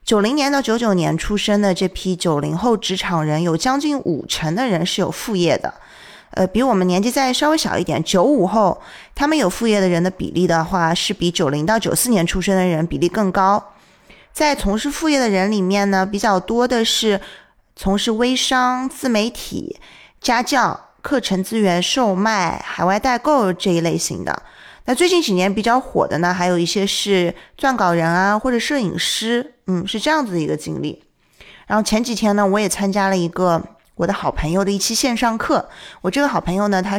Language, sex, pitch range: Chinese, female, 180-240 Hz